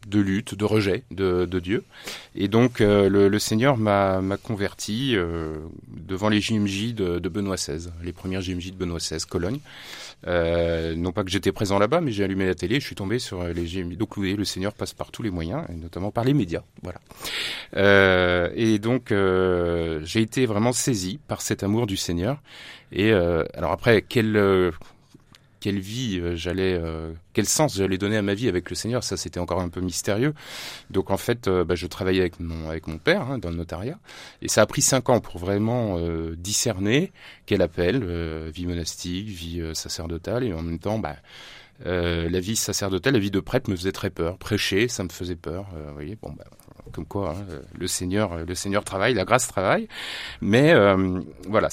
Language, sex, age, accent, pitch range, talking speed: French, male, 30-49, French, 90-110 Hz, 210 wpm